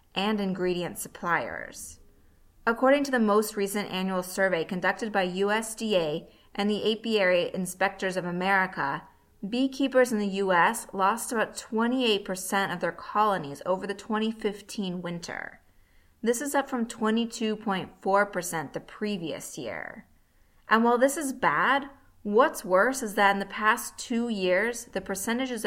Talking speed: 135 wpm